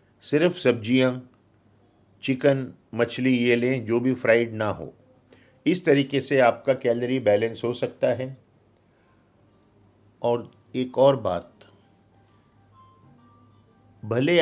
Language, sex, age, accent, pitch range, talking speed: Hindi, male, 50-69, native, 105-150 Hz, 105 wpm